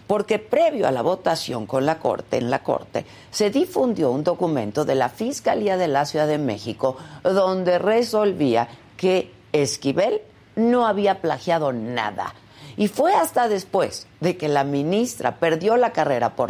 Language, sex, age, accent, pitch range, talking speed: Spanish, female, 50-69, Mexican, 135-205 Hz, 155 wpm